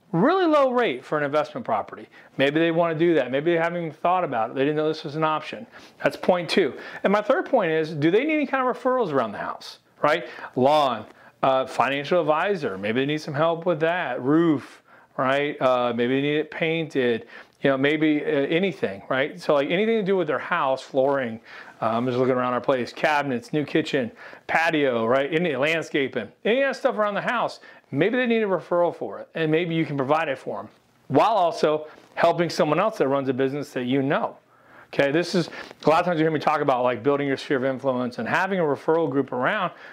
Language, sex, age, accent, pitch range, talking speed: English, male, 40-59, American, 140-185 Hz, 225 wpm